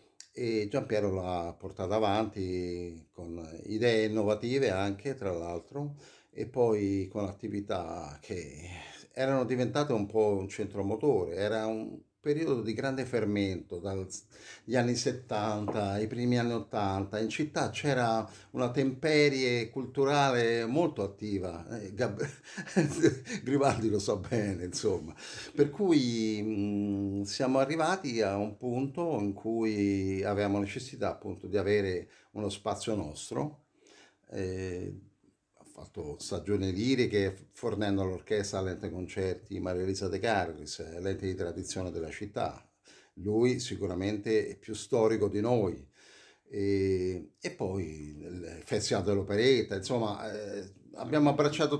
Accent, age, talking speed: native, 50-69, 120 wpm